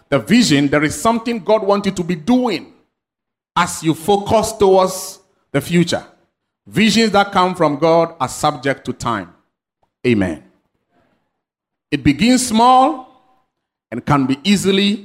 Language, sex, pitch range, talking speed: English, male, 125-175 Hz, 135 wpm